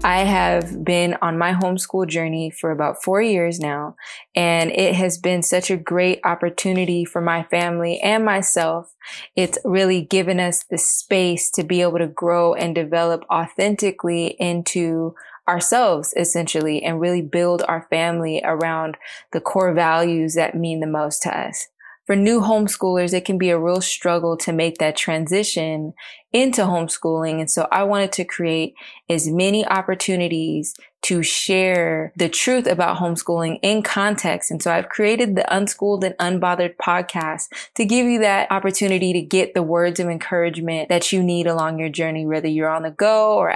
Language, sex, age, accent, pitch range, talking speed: English, female, 20-39, American, 165-190 Hz, 165 wpm